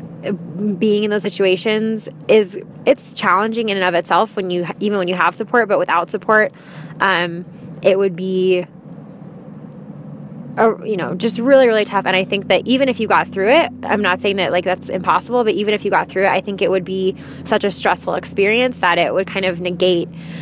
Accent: American